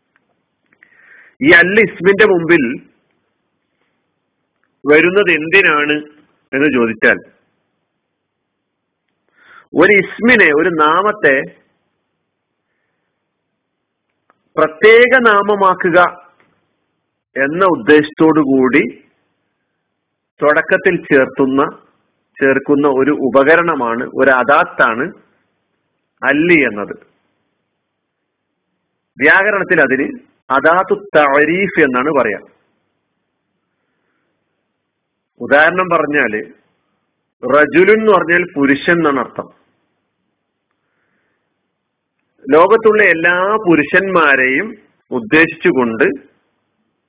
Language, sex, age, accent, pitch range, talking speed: Malayalam, male, 50-69, native, 145-200 Hz, 55 wpm